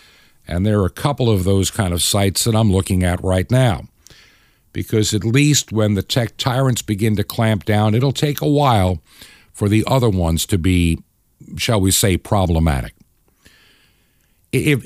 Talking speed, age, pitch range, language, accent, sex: 170 wpm, 60-79, 100-135 Hz, English, American, male